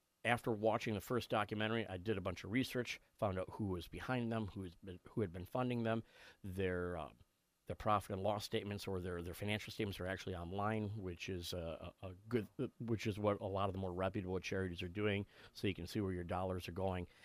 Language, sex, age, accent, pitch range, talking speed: English, male, 40-59, American, 95-110 Hz, 230 wpm